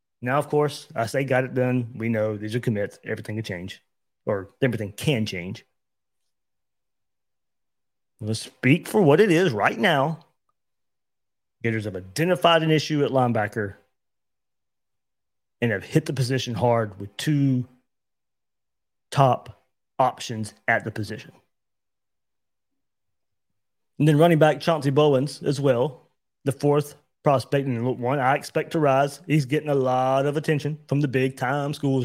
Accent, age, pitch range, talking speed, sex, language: American, 30-49, 120-145 Hz, 140 wpm, male, English